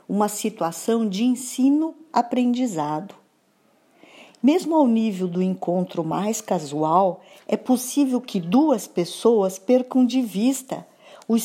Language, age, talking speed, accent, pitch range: Portuguese, 50-69, 105 wpm, Brazilian, 185-245 Hz